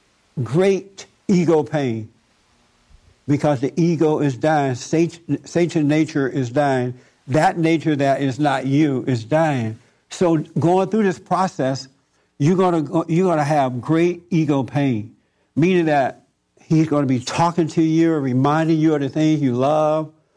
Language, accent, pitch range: English, American, 135-170 Hz